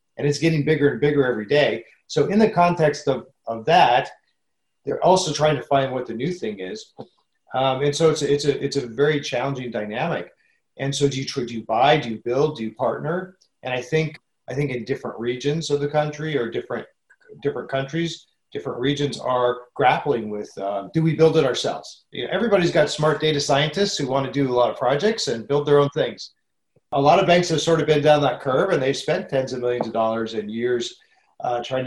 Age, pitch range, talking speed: 40-59, 120-150 Hz, 225 wpm